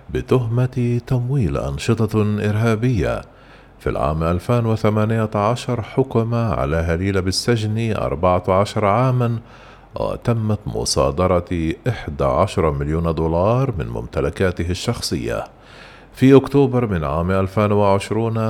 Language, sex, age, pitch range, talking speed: Arabic, male, 50-69, 85-115 Hz, 85 wpm